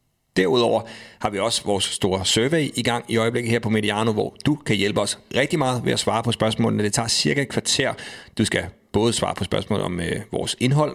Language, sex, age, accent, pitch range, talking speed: Danish, male, 40-59, native, 100-120 Hz, 225 wpm